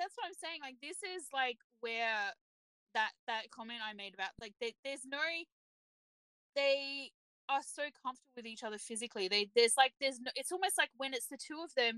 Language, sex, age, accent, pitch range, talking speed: English, female, 20-39, Australian, 205-270 Hz, 205 wpm